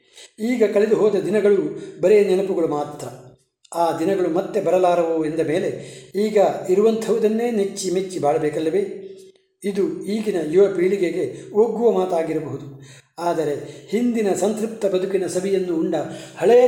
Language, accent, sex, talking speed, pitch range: Kannada, native, male, 110 wpm, 165-220 Hz